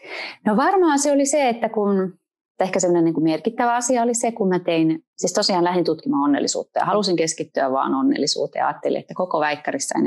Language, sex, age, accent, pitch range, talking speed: Finnish, female, 30-49, native, 160-235 Hz, 195 wpm